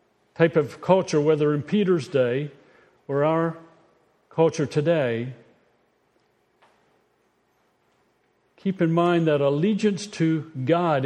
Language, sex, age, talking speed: English, male, 50-69, 100 wpm